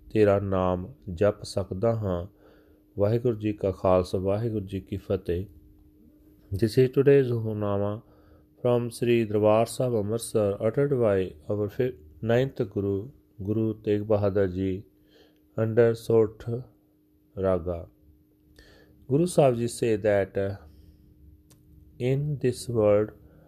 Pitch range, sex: 95-115 Hz, male